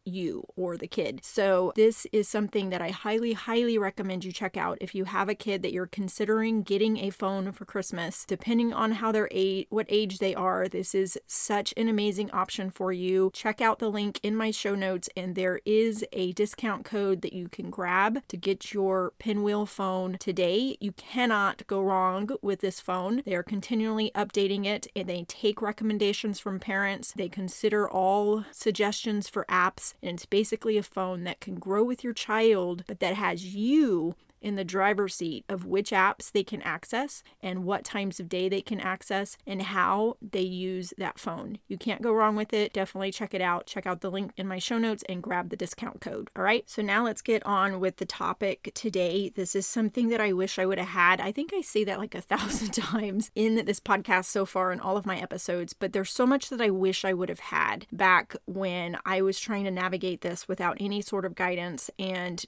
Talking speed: 210 wpm